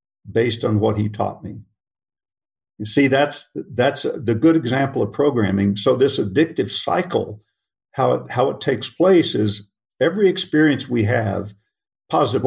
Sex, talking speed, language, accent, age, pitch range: male, 150 wpm, English, American, 50-69, 105-140 Hz